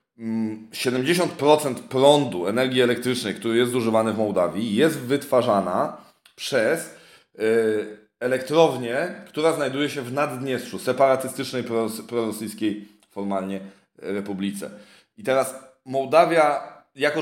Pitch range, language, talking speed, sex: 115-150 Hz, Polish, 85 wpm, male